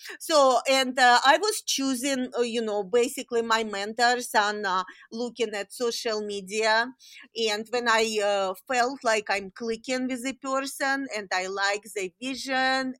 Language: English